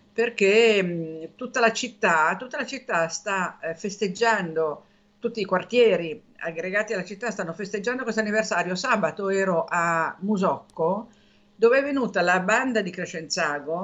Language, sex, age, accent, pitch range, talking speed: Italian, female, 50-69, native, 165-210 Hz, 130 wpm